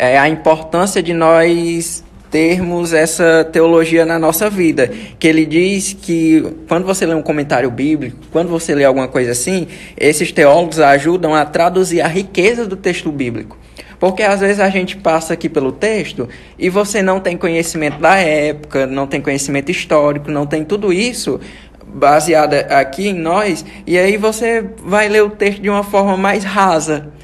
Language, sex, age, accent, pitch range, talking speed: Portuguese, male, 20-39, Brazilian, 155-190 Hz, 170 wpm